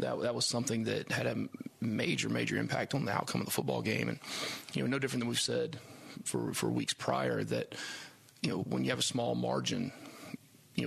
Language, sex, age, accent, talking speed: English, male, 30-49, American, 215 wpm